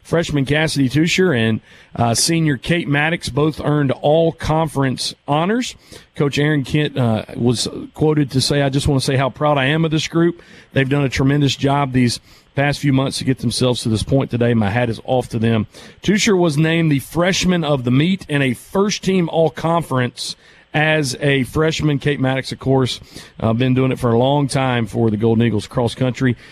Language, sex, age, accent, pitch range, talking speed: English, male, 40-59, American, 125-160 Hz, 195 wpm